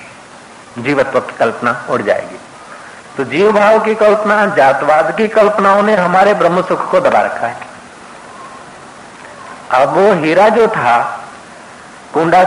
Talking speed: 130 wpm